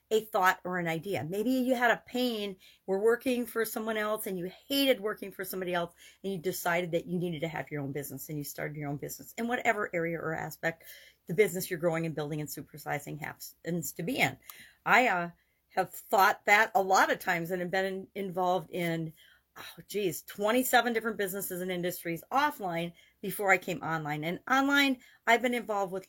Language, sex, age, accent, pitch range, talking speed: English, female, 40-59, American, 165-215 Hz, 205 wpm